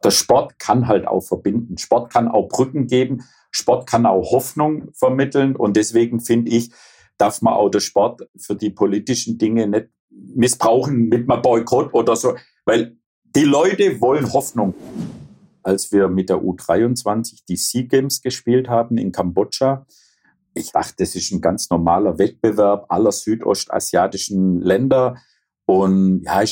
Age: 50-69